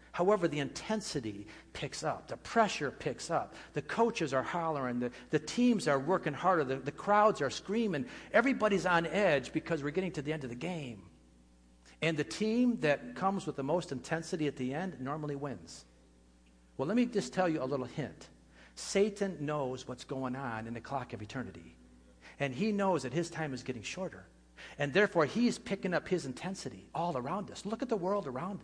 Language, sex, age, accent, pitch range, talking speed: English, male, 50-69, American, 130-200 Hz, 195 wpm